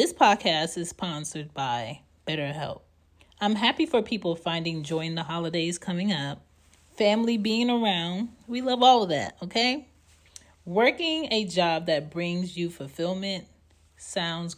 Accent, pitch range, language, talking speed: American, 145-200 Hz, English, 140 wpm